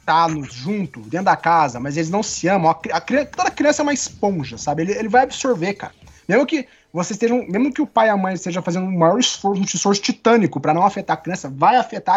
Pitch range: 165-245 Hz